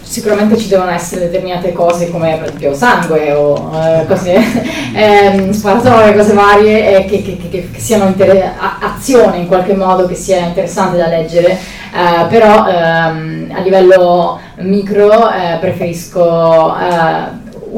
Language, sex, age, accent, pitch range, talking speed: Italian, female, 20-39, native, 165-200 Hz, 140 wpm